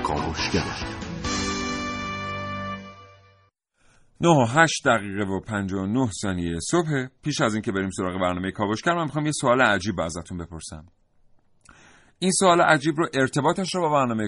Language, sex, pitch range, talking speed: Persian, male, 100-145 Hz, 120 wpm